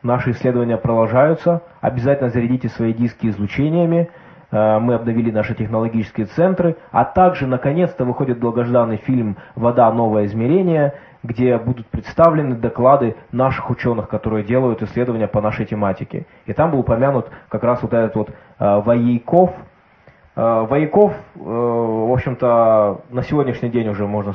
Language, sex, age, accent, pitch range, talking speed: Russian, male, 20-39, native, 105-130 Hz, 130 wpm